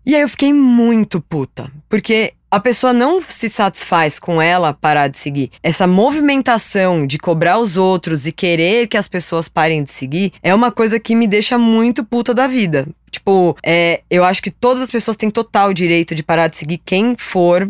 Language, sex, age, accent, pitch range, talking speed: Portuguese, female, 20-39, Brazilian, 170-225 Hz, 195 wpm